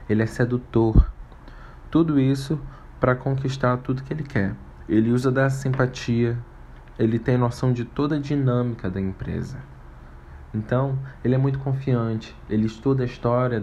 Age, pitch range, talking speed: 20-39, 95-125 Hz, 145 wpm